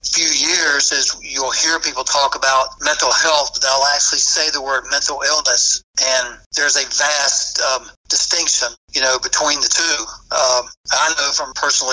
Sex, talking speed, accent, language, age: male, 170 wpm, American, English, 60-79